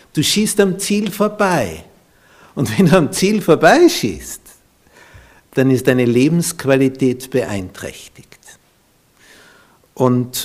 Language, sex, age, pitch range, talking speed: German, male, 60-79, 125-180 Hz, 105 wpm